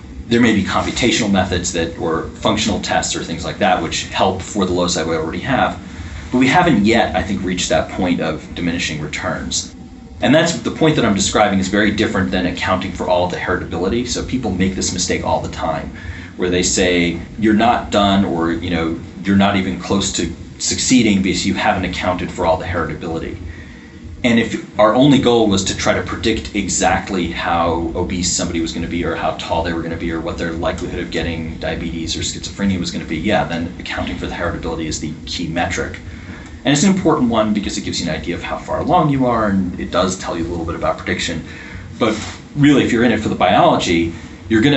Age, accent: 30-49, American